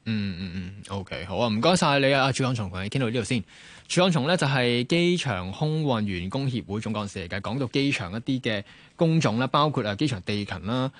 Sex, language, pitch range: male, Chinese, 100-140 Hz